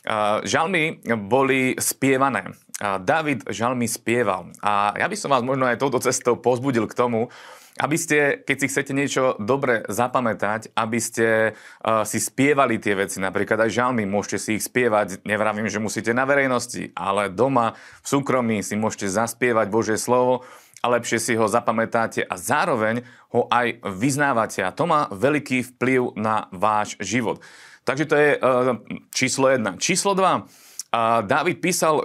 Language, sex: Slovak, male